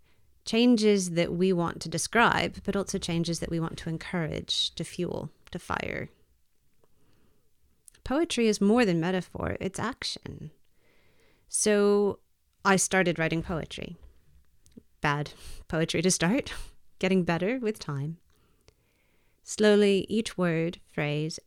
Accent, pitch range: American, 155-195 Hz